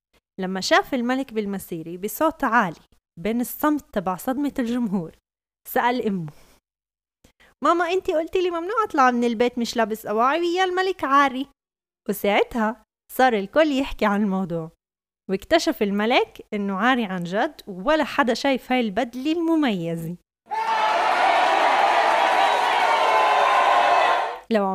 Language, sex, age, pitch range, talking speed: Arabic, female, 20-39, 190-270 Hz, 110 wpm